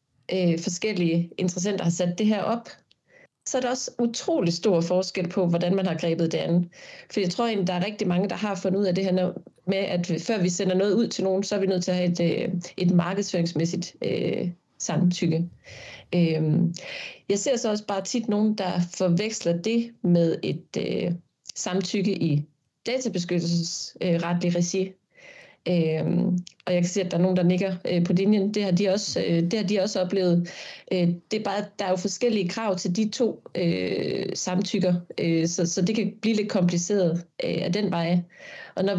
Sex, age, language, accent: female, 30-49, Danish, native